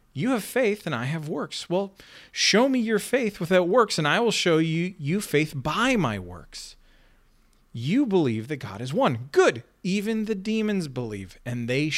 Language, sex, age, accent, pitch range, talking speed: English, male, 40-59, American, 120-185 Hz, 185 wpm